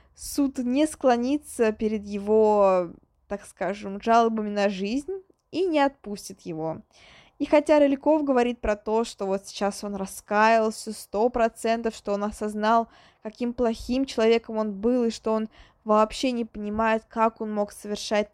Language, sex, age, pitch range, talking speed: Russian, female, 20-39, 205-255 Hz, 145 wpm